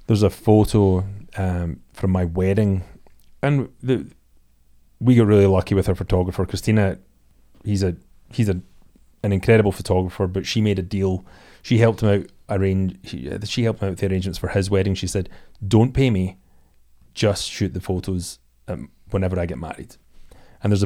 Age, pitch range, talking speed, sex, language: 30-49, 90-110 Hz, 170 wpm, male, English